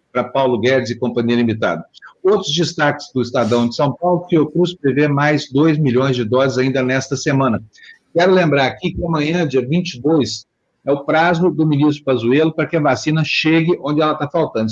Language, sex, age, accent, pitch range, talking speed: Portuguese, male, 50-69, Brazilian, 125-155 Hz, 190 wpm